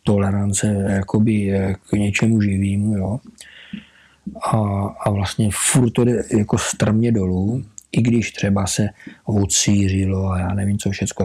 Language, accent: Czech, native